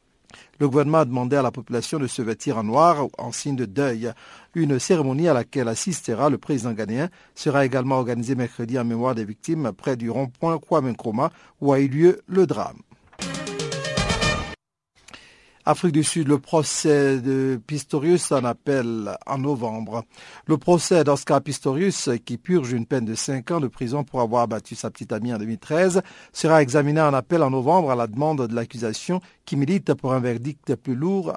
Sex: male